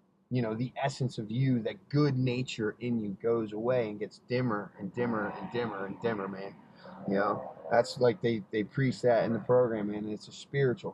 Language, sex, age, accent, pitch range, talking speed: English, male, 20-39, American, 115-140 Hz, 215 wpm